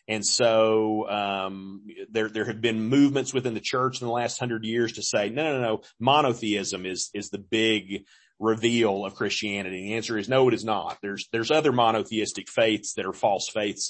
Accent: American